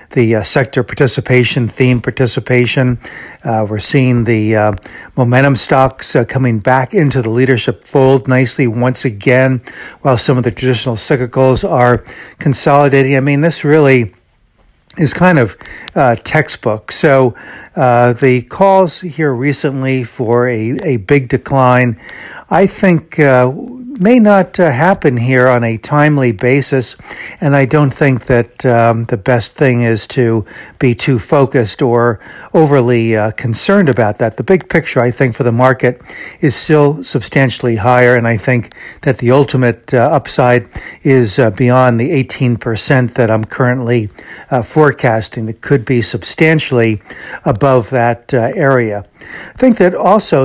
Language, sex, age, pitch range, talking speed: English, male, 60-79, 120-145 Hz, 145 wpm